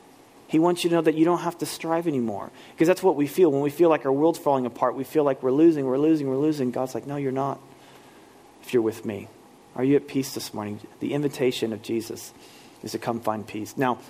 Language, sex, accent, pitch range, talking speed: English, male, American, 120-140 Hz, 250 wpm